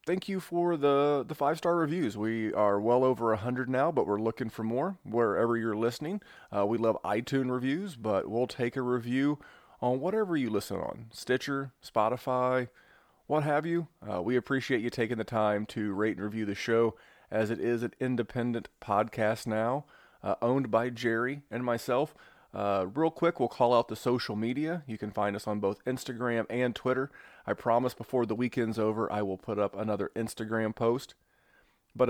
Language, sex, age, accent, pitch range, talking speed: English, male, 30-49, American, 105-130 Hz, 185 wpm